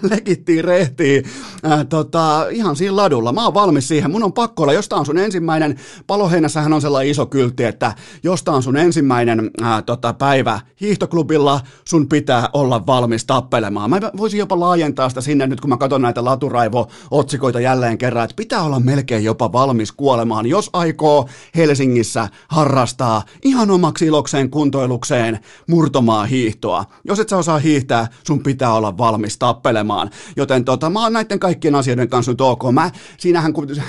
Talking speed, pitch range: 165 wpm, 120-155 Hz